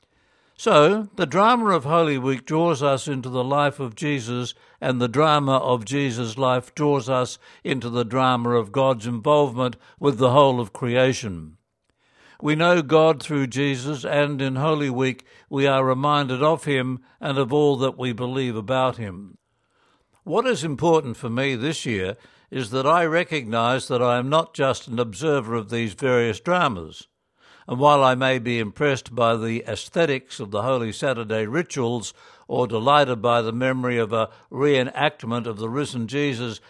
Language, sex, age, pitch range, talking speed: English, male, 60-79, 125-145 Hz, 165 wpm